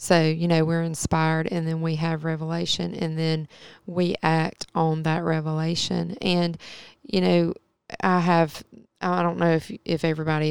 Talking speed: 160 wpm